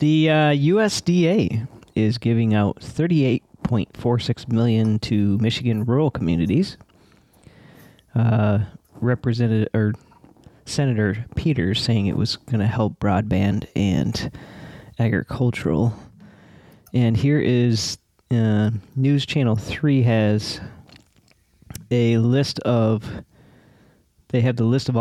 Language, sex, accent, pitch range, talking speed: English, male, American, 110-135 Hz, 100 wpm